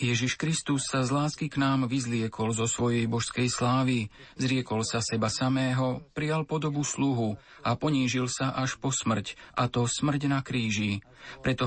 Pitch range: 115-140 Hz